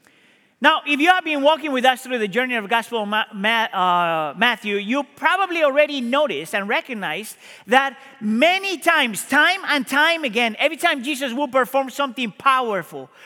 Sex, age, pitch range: male, 40-59, 250-330 Hz